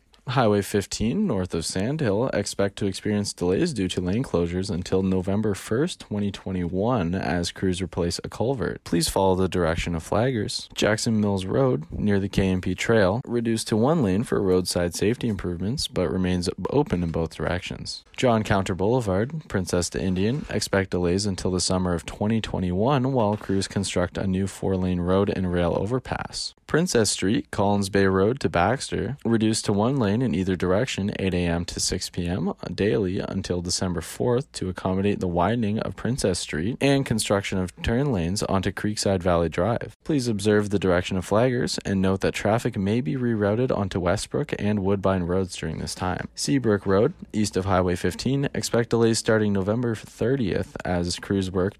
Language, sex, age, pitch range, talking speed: English, male, 20-39, 90-110 Hz, 170 wpm